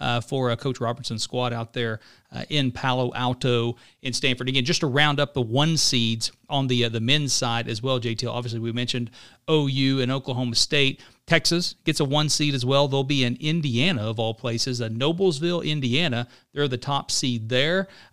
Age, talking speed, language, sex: 40-59, 200 wpm, English, male